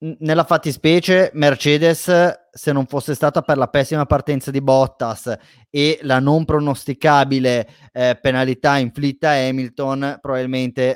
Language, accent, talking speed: Italian, native, 125 wpm